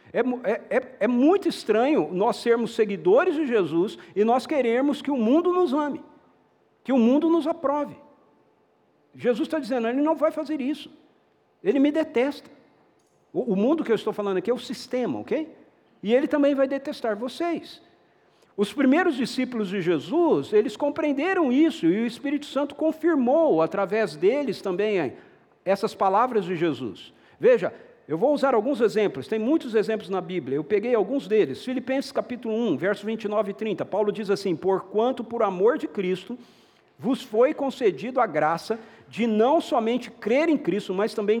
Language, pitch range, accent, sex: Portuguese, 210-285 Hz, Brazilian, male